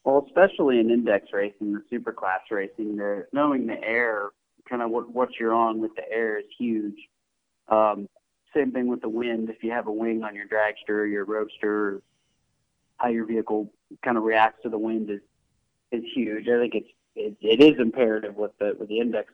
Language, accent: English, American